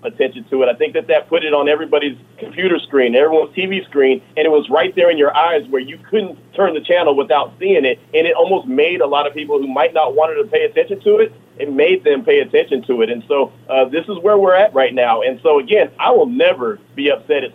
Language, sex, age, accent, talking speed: English, male, 30-49, American, 260 wpm